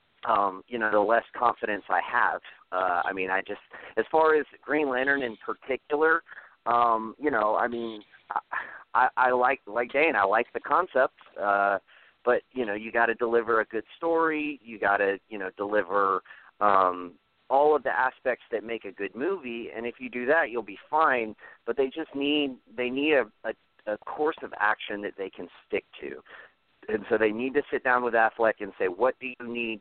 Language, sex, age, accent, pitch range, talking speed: English, male, 40-59, American, 105-130 Hz, 205 wpm